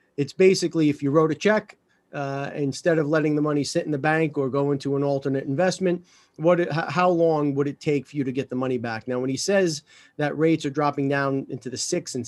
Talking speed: 240 wpm